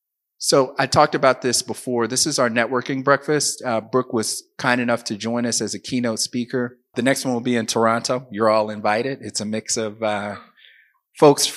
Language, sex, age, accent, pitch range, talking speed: English, male, 30-49, American, 110-125 Hz, 200 wpm